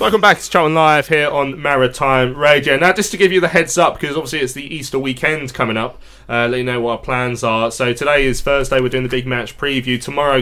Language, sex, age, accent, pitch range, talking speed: English, male, 20-39, British, 120-145 Hz, 255 wpm